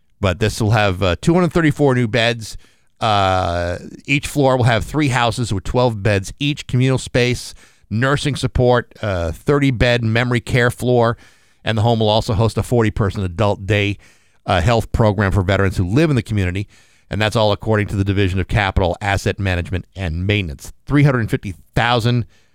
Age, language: 50-69, English